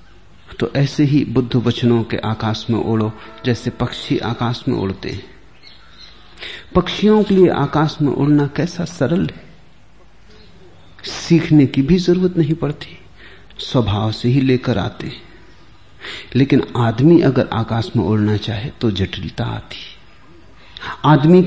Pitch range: 110-150 Hz